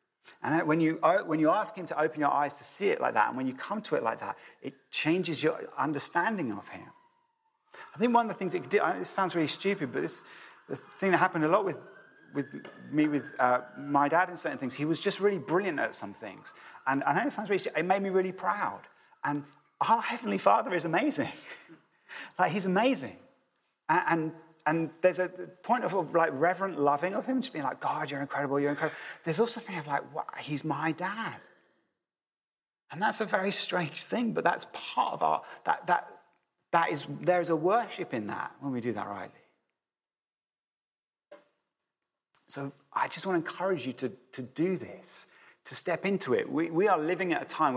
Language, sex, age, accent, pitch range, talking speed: English, male, 30-49, British, 145-190 Hz, 210 wpm